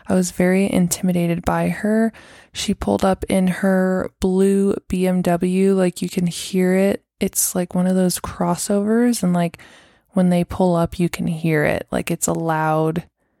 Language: English